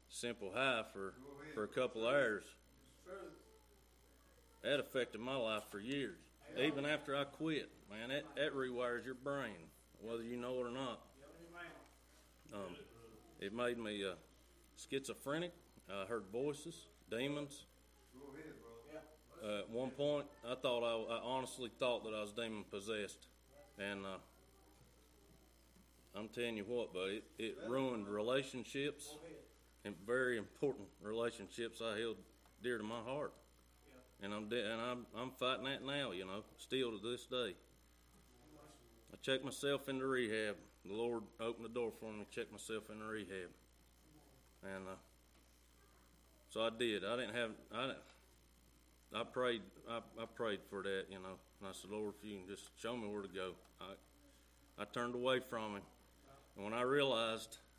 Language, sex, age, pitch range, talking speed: English, male, 40-59, 85-125 Hz, 155 wpm